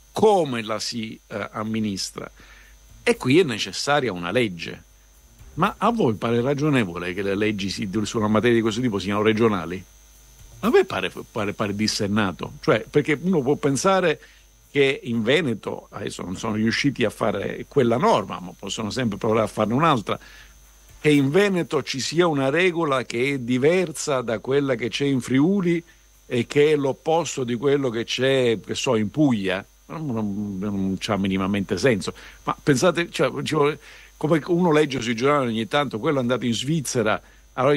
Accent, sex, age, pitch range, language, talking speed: native, male, 50-69, 105-140 Hz, Italian, 165 wpm